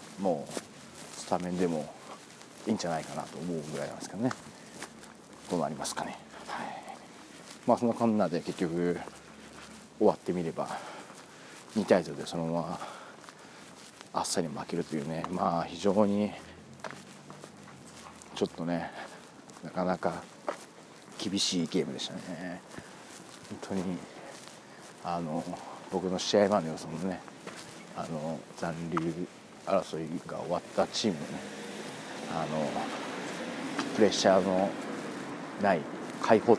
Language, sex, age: Japanese, male, 40-59